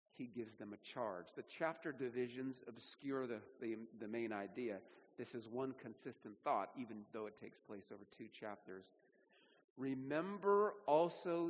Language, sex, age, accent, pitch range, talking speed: English, male, 40-59, American, 115-155 Hz, 150 wpm